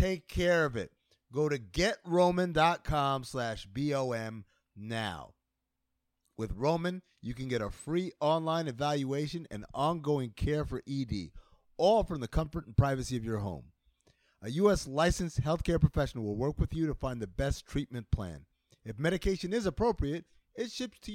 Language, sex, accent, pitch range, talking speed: English, male, American, 110-170 Hz, 155 wpm